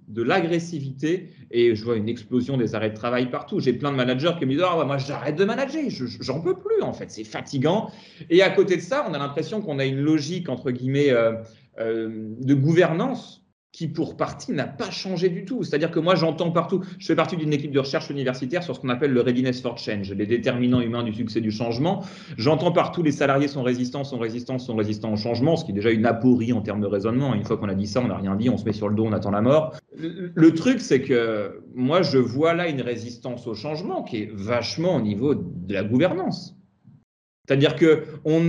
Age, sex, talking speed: 30-49, male, 235 wpm